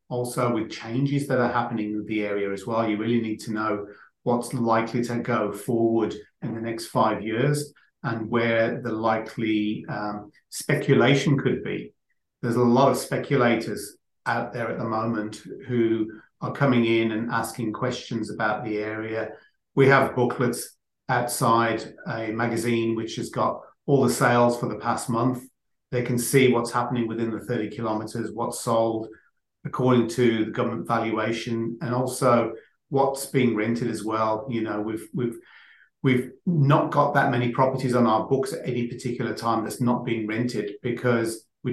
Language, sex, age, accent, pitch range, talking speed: English, male, 40-59, British, 110-125 Hz, 165 wpm